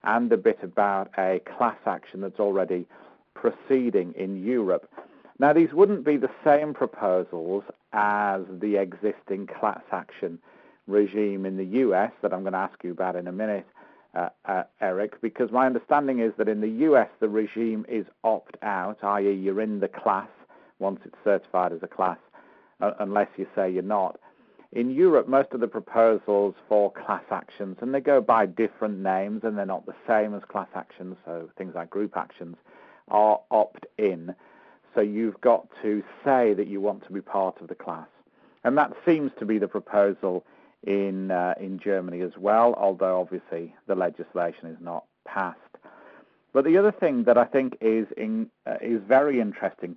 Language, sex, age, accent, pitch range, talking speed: English, male, 50-69, British, 95-115 Hz, 175 wpm